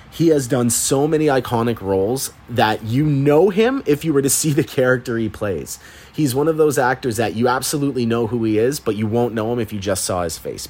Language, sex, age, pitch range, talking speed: English, male, 30-49, 100-130 Hz, 240 wpm